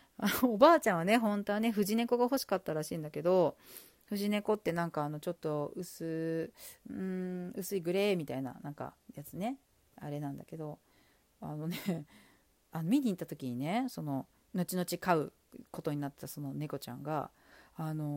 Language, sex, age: Japanese, female, 40-59